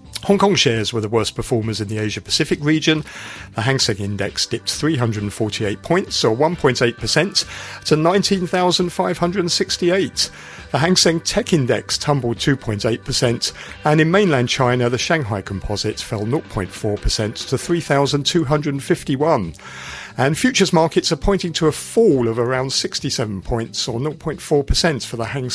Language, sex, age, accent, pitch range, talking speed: English, male, 40-59, British, 115-170 Hz, 130 wpm